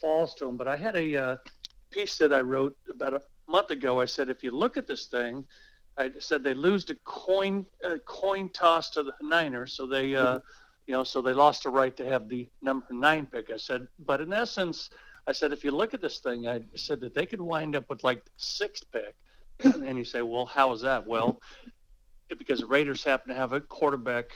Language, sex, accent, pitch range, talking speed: English, male, American, 130-170 Hz, 225 wpm